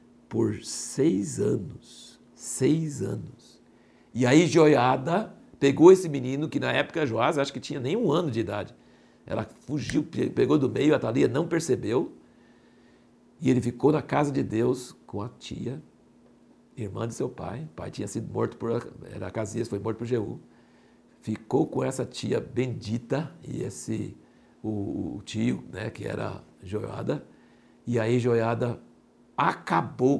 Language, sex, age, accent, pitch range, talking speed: Portuguese, male, 60-79, Brazilian, 115-165 Hz, 155 wpm